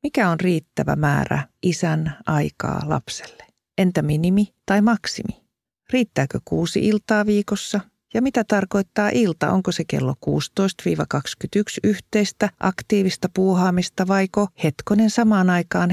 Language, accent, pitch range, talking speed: Finnish, native, 160-205 Hz, 115 wpm